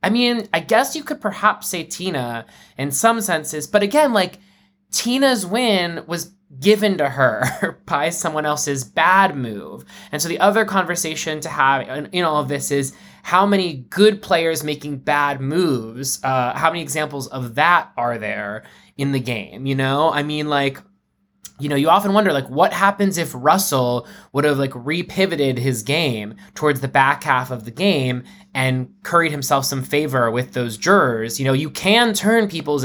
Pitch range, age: 130-175 Hz, 20-39